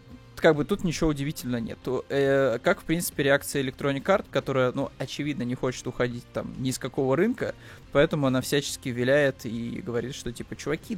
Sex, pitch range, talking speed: male, 125-145 Hz, 180 wpm